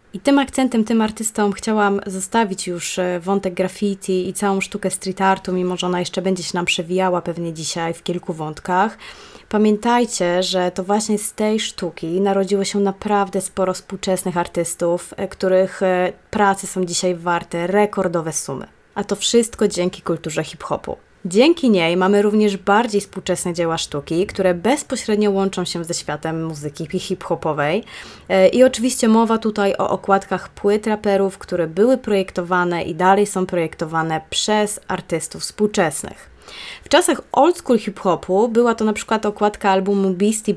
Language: Polish